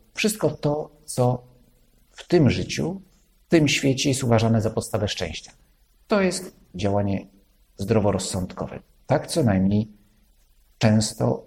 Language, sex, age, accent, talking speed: Polish, male, 50-69, native, 115 wpm